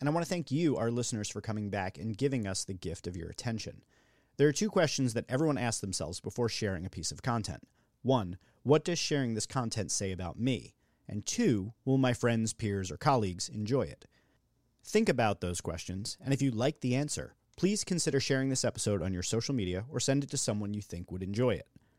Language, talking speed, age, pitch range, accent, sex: English, 220 wpm, 40-59, 100-130 Hz, American, male